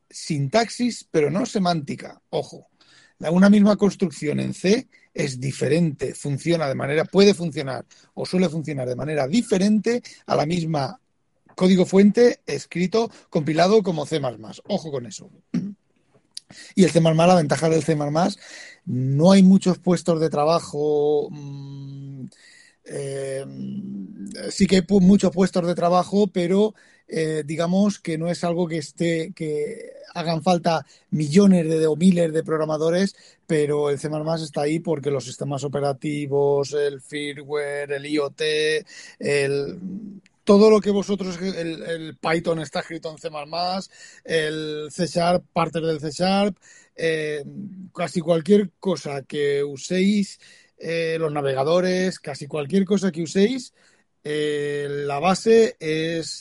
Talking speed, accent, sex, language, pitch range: 130 wpm, Spanish, male, Spanish, 150-190 Hz